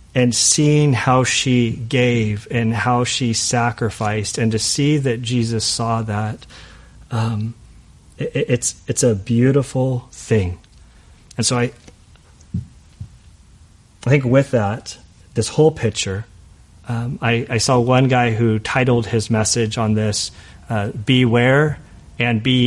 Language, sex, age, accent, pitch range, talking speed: English, male, 40-59, American, 105-120 Hz, 130 wpm